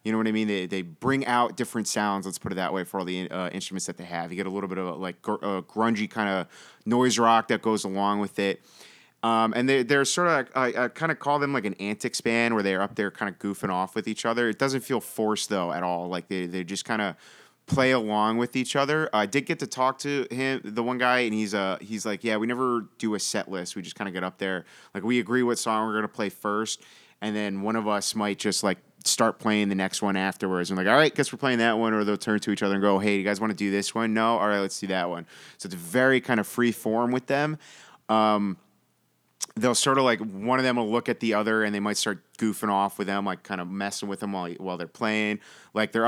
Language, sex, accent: English, male, American